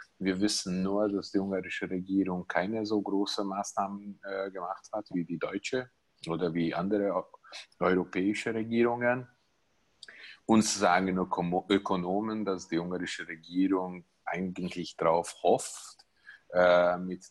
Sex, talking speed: male, 125 wpm